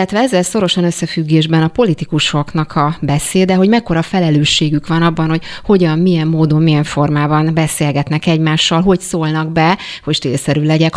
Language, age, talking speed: Hungarian, 30-49, 150 wpm